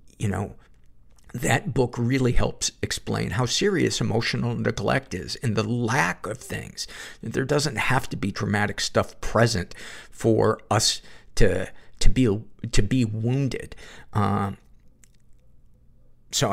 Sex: male